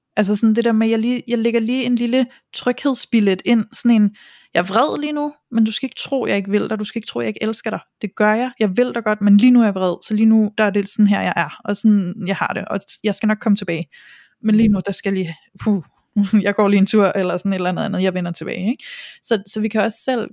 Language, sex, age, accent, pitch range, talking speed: Danish, female, 20-39, native, 190-220 Hz, 300 wpm